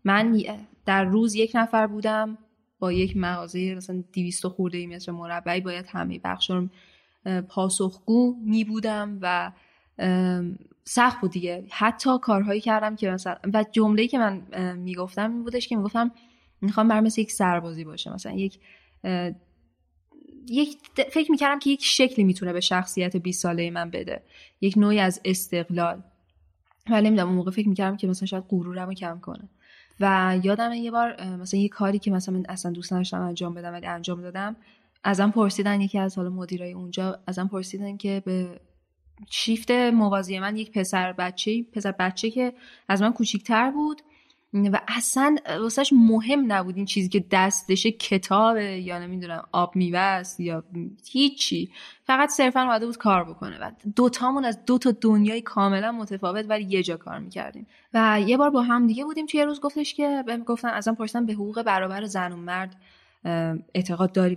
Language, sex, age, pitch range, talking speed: Persian, female, 10-29, 180-225 Hz, 165 wpm